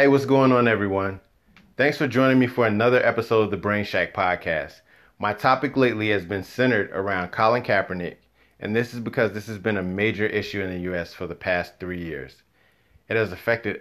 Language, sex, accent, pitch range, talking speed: English, male, American, 90-115 Hz, 205 wpm